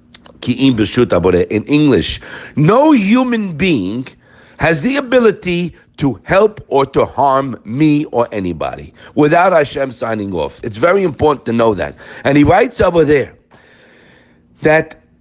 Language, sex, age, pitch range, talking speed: English, male, 50-69, 125-190 Hz, 125 wpm